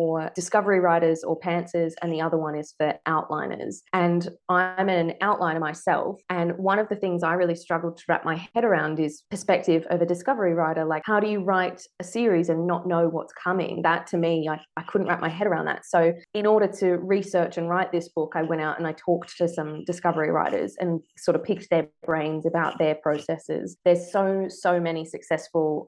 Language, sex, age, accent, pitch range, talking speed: English, female, 20-39, Australian, 160-185 Hz, 210 wpm